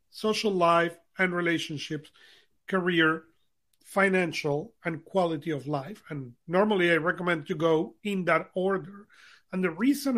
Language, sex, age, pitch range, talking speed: English, male, 40-59, 155-195 Hz, 130 wpm